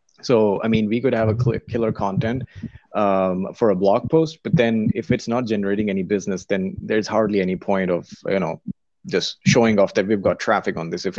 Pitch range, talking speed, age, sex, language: 100-120 Hz, 215 wpm, 30-49, male, English